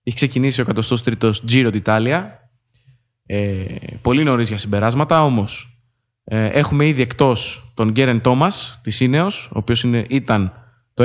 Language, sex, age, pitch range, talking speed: Greek, male, 20-39, 115-150 Hz, 145 wpm